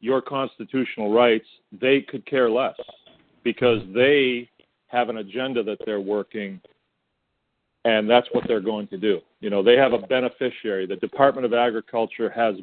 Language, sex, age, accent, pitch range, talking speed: English, male, 40-59, American, 105-120 Hz, 155 wpm